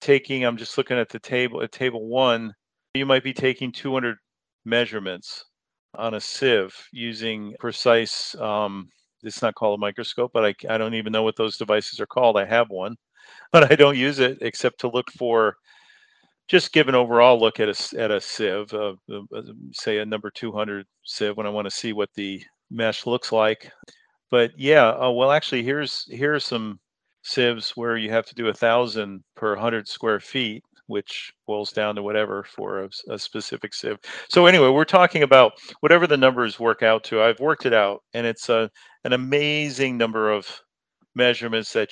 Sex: male